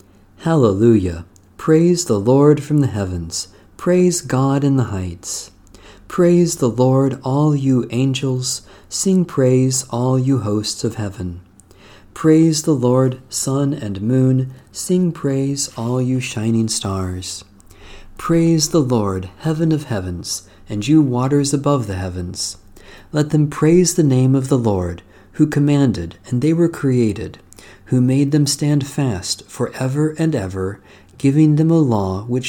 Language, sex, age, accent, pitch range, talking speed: English, male, 40-59, American, 95-140 Hz, 140 wpm